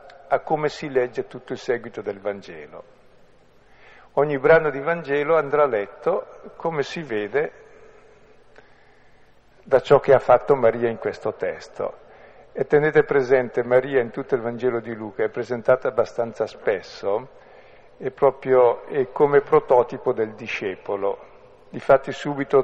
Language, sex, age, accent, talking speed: Italian, male, 50-69, native, 135 wpm